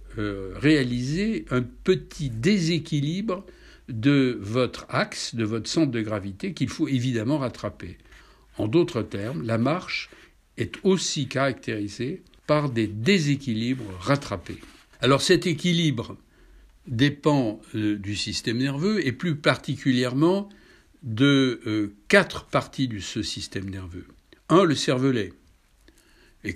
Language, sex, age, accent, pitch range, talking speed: French, male, 60-79, French, 105-145 Hz, 115 wpm